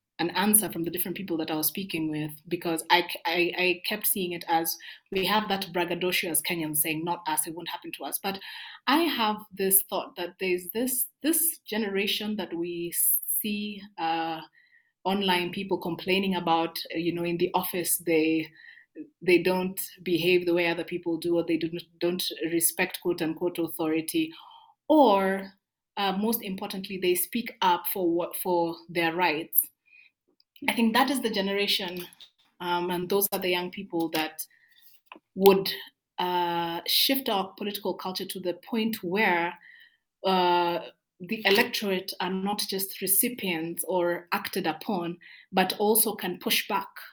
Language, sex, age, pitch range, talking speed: English, female, 30-49, 170-210 Hz, 160 wpm